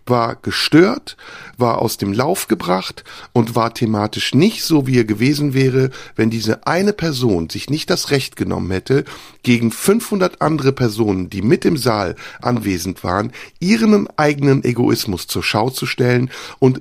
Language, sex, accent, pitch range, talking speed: German, male, German, 110-140 Hz, 155 wpm